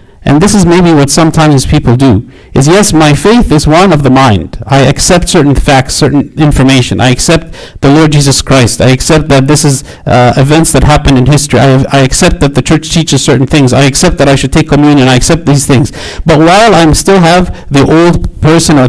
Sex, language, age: male, English, 60-79